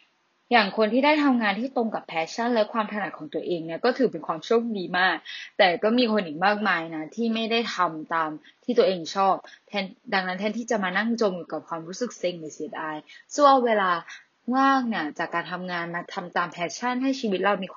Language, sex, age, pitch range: Thai, female, 10-29, 175-235 Hz